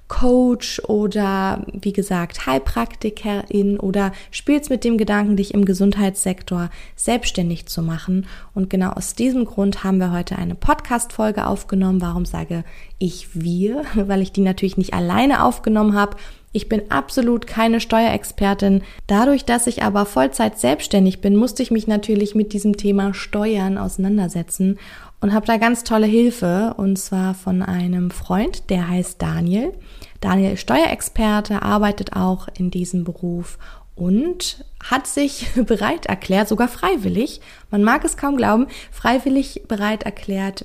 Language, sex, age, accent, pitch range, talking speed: German, female, 20-39, German, 185-225 Hz, 145 wpm